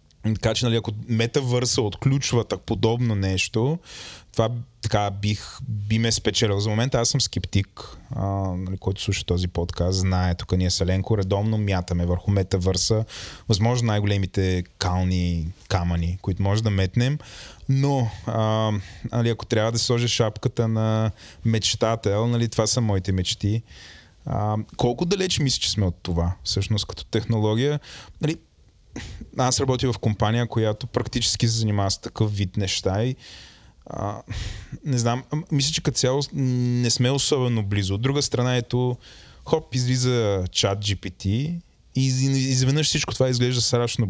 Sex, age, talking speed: male, 20-39, 145 wpm